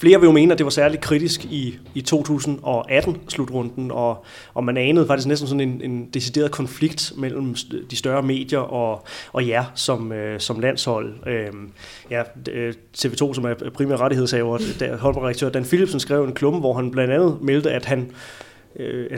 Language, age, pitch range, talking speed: Danish, 30-49, 125-155 Hz, 185 wpm